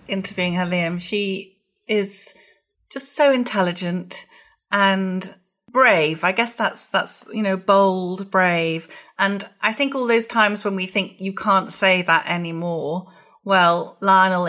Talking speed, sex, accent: 140 wpm, female, British